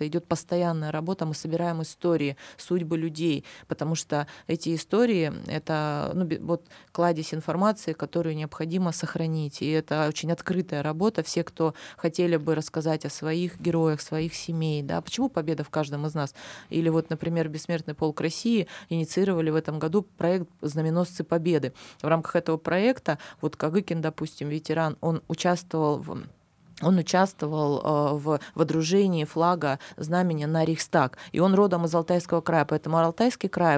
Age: 20-39